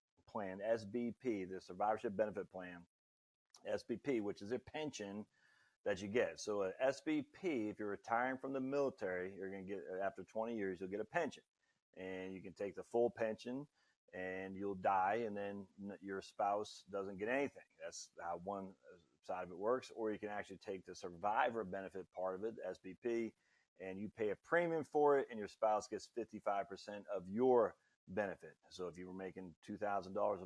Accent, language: American, English